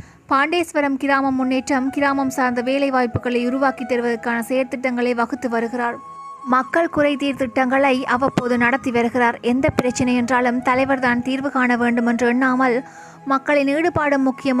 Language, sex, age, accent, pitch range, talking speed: Tamil, female, 20-39, native, 245-275 Hz, 120 wpm